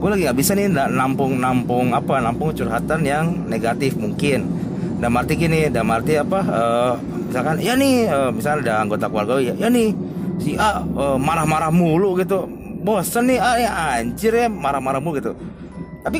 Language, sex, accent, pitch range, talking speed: Indonesian, male, native, 130-180 Hz, 175 wpm